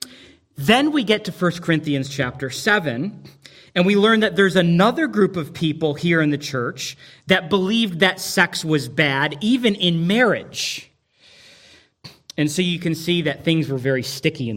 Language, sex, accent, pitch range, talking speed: English, male, American, 140-185 Hz, 170 wpm